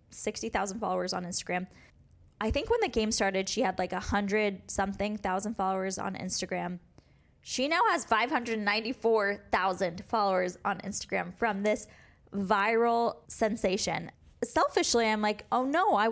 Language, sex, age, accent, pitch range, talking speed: English, female, 20-39, American, 190-230 Hz, 140 wpm